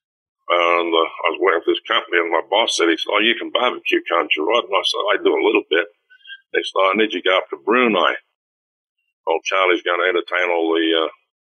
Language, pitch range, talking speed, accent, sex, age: English, 350-430 Hz, 245 wpm, American, male, 60-79